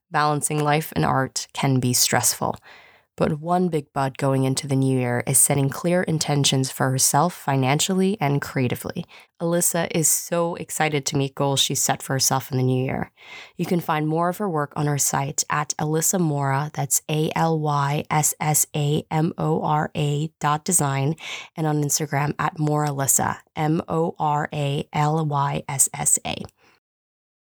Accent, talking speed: American, 140 wpm